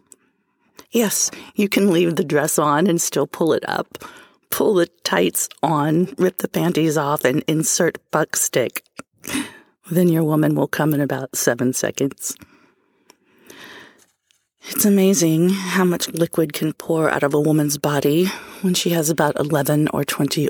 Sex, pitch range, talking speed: female, 150-180 Hz, 150 wpm